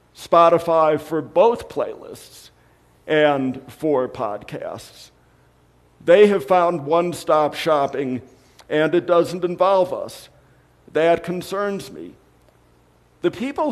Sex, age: male, 50-69